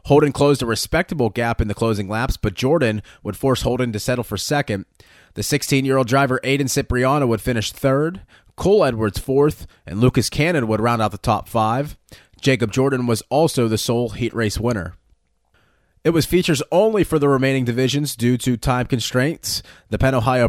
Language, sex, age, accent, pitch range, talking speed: English, male, 30-49, American, 110-145 Hz, 180 wpm